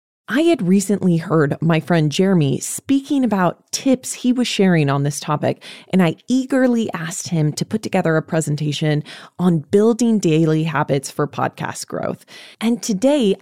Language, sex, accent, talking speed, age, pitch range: English, female, American, 155 wpm, 20-39, 155-220 Hz